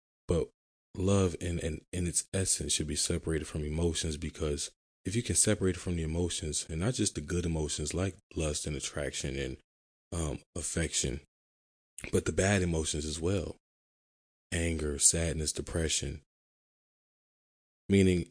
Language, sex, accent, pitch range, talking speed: English, male, American, 75-90 Hz, 145 wpm